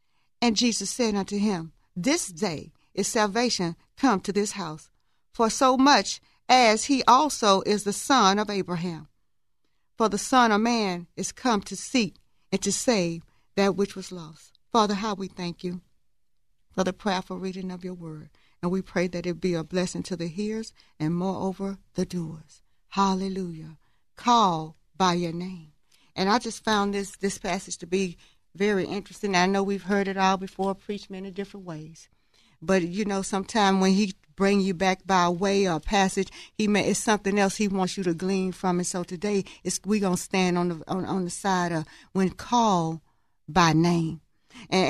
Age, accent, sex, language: 40-59, American, female, English